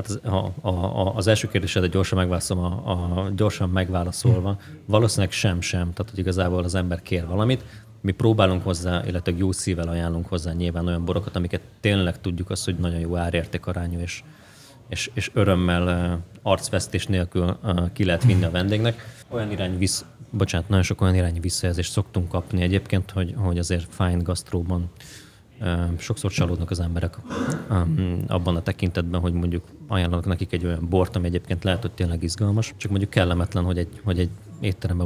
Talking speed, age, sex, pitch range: 165 wpm, 30-49, male, 90-105 Hz